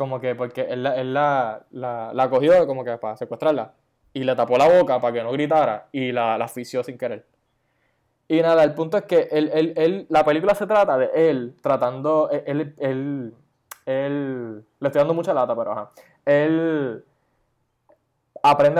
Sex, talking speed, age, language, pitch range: male, 185 wpm, 10-29, Spanish, 130-155 Hz